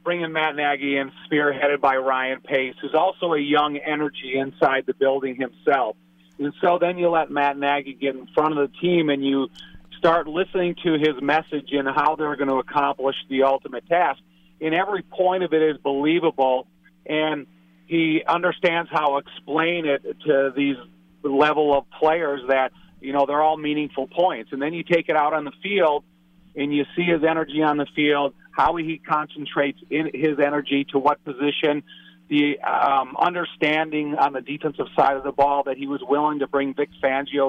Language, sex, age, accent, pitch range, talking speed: English, male, 40-59, American, 135-160 Hz, 185 wpm